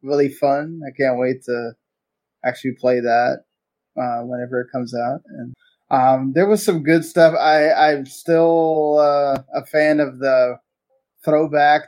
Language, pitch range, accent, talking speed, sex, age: English, 130-150 Hz, American, 150 wpm, male, 20-39